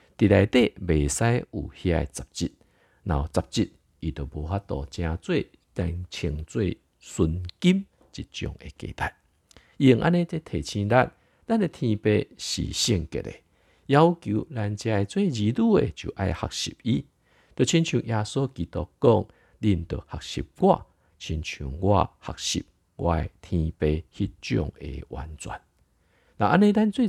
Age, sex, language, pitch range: 50-69, male, Chinese, 80-115 Hz